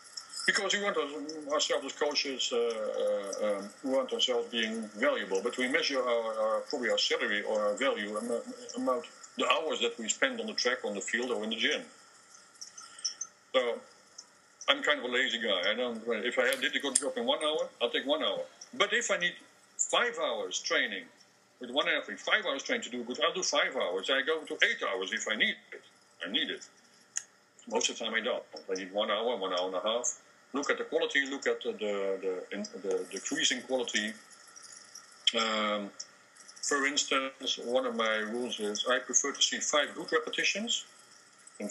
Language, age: English, 50-69